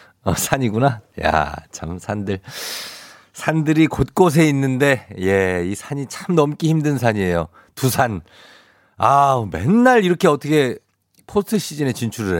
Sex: male